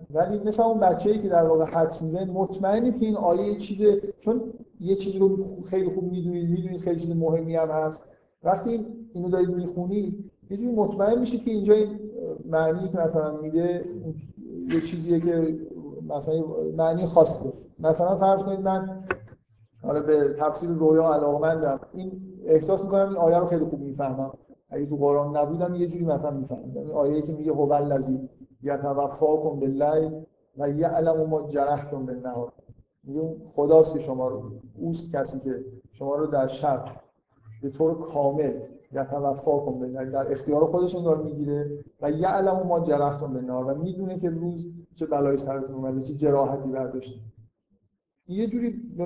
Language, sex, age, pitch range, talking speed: Persian, male, 50-69, 140-180 Hz, 170 wpm